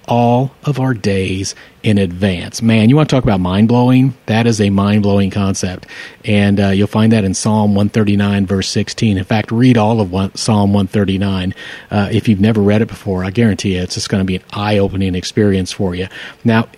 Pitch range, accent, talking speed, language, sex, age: 100-125 Hz, American, 210 wpm, English, male, 40-59